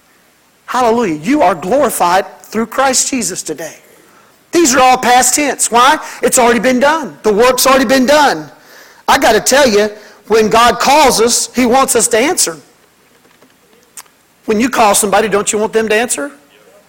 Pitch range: 225-290 Hz